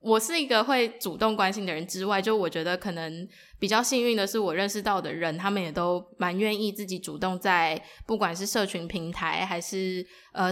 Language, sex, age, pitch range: Chinese, female, 10-29, 180-215 Hz